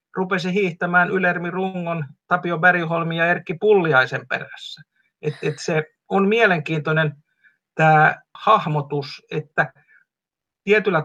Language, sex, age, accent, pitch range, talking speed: Finnish, male, 50-69, native, 155-195 Hz, 105 wpm